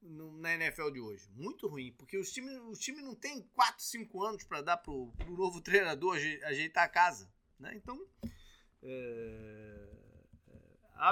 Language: Portuguese